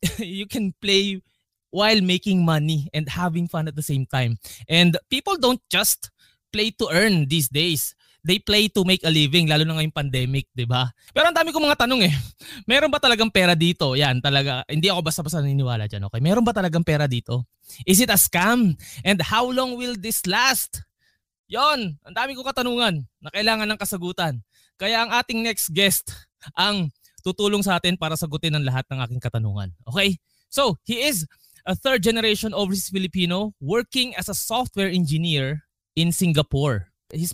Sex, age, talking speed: male, 20-39, 175 wpm